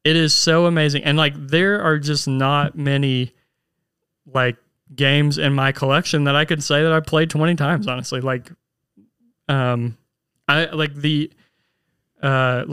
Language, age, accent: English, 30-49, American